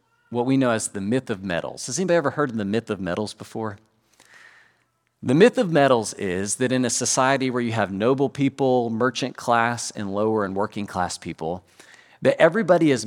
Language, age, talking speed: English, 40-59, 200 wpm